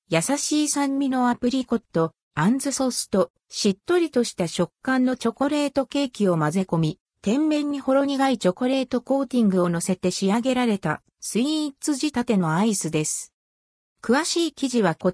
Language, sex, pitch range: Japanese, female, 185-265 Hz